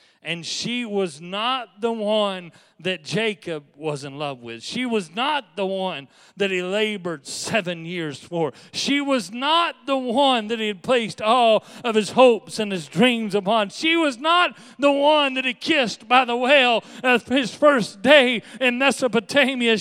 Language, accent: English, American